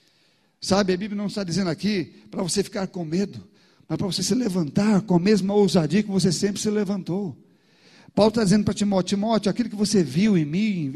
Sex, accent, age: male, Brazilian, 50-69